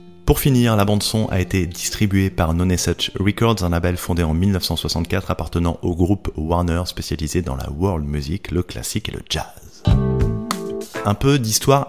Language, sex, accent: French, male, French